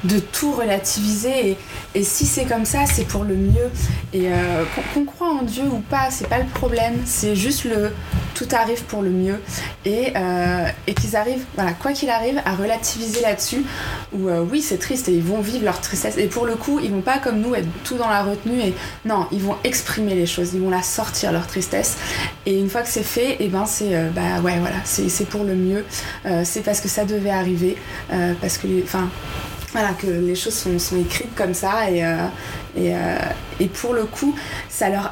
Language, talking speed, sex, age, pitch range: French, 225 wpm, female, 20-39, 180-235 Hz